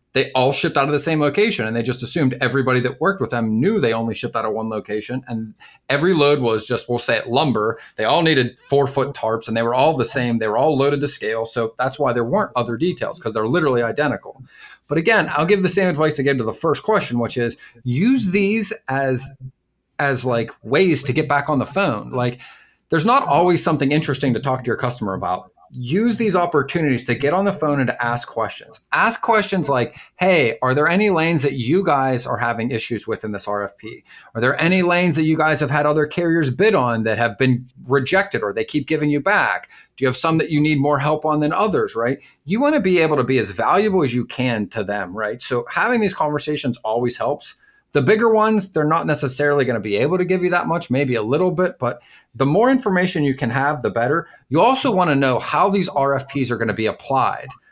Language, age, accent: English, 30-49, American